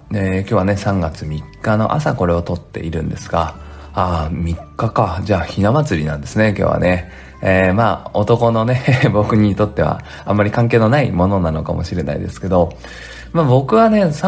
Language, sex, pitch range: Japanese, male, 85-125 Hz